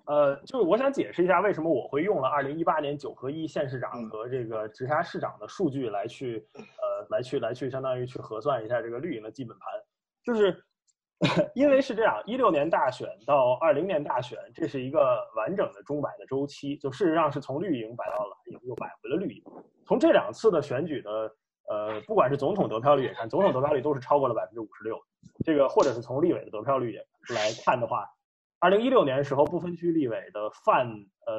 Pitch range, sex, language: 125-200 Hz, male, Chinese